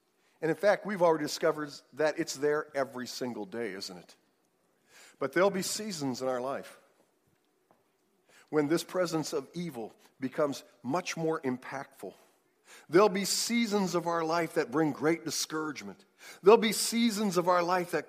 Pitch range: 150-230 Hz